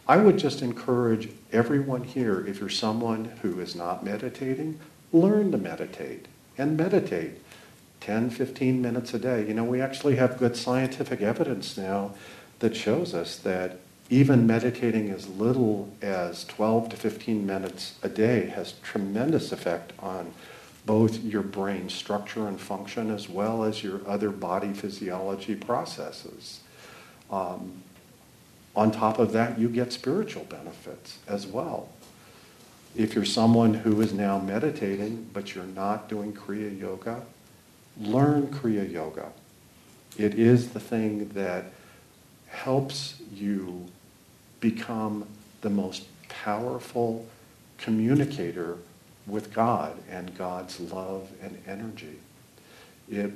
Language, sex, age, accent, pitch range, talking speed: English, male, 50-69, American, 100-120 Hz, 125 wpm